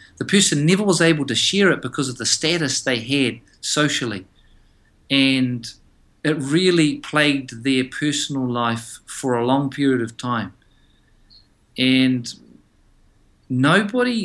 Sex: male